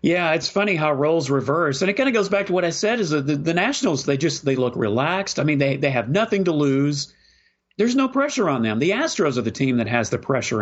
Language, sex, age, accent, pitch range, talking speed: English, male, 40-59, American, 120-160 Hz, 265 wpm